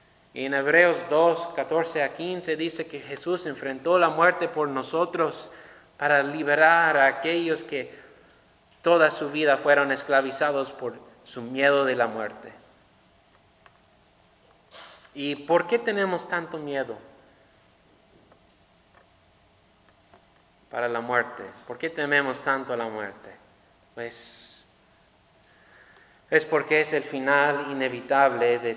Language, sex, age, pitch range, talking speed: English, male, 30-49, 120-145 Hz, 110 wpm